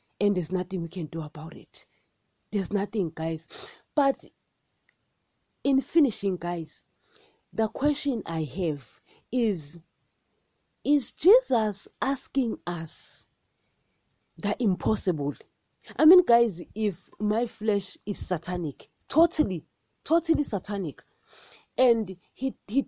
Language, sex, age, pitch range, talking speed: English, female, 40-59, 170-245 Hz, 105 wpm